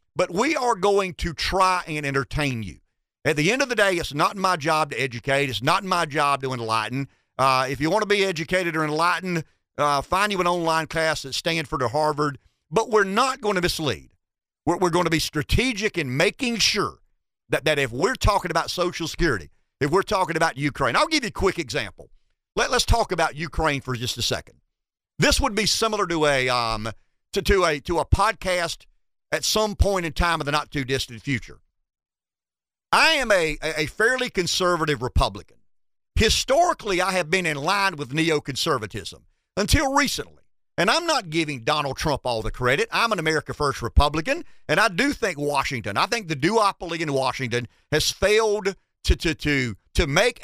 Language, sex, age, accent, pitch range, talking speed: English, male, 50-69, American, 135-185 Hz, 190 wpm